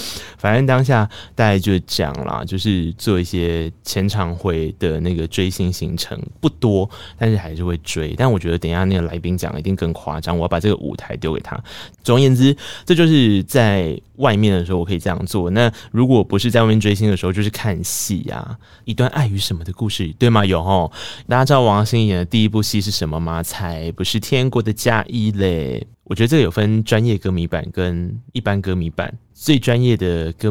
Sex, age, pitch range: male, 20-39, 90-115 Hz